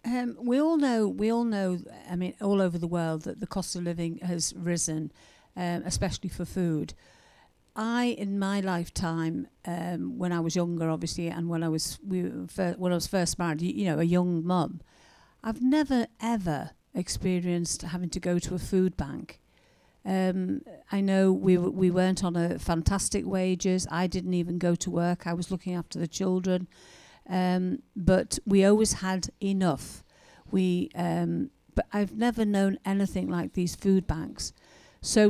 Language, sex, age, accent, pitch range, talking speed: English, female, 50-69, British, 175-195 Hz, 165 wpm